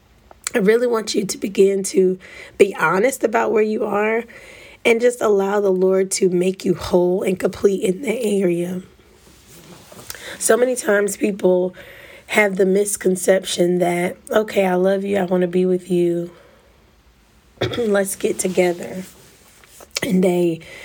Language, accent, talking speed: English, American, 145 wpm